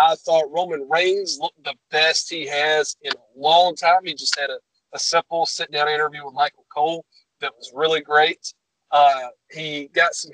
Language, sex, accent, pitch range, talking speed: English, male, American, 140-175 Hz, 185 wpm